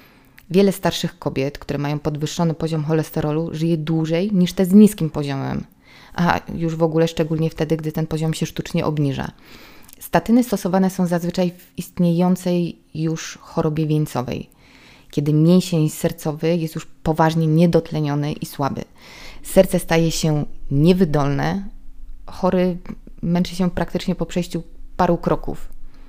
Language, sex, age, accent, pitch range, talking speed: Polish, female, 20-39, native, 160-185 Hz, 130 wpm